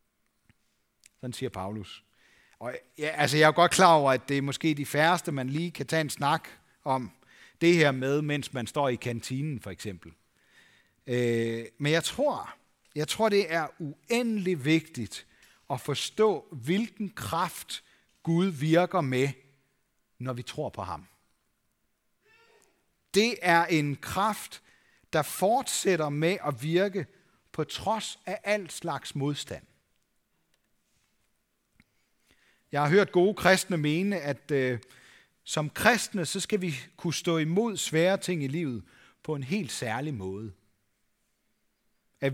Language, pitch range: Danish, 130-180 Hz